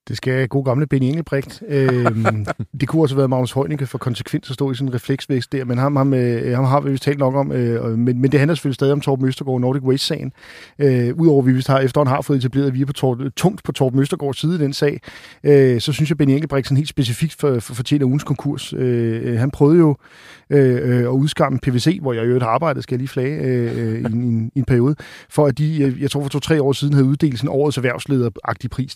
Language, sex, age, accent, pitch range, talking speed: Danish, male, 40-59, native, 130-150 Hz, 240 wpm